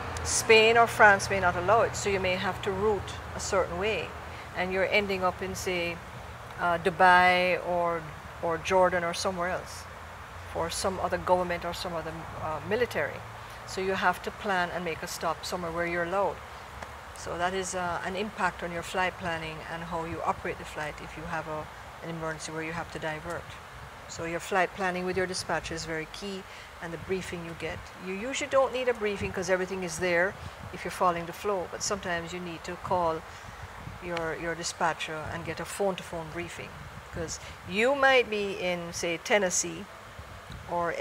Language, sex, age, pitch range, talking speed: English, female, 50-69, 165-190 Hz, 190 wpm